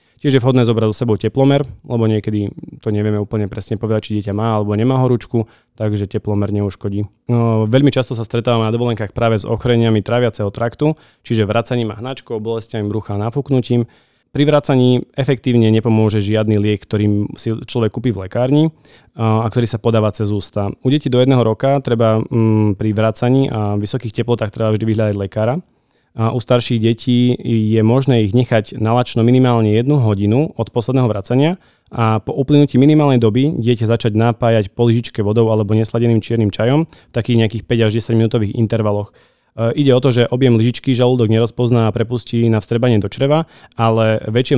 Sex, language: male, Slovak